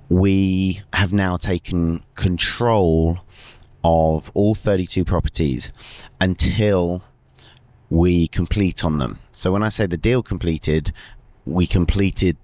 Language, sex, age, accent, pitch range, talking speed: English, male, 30-49, British, 85-100 Hz, 110 wpm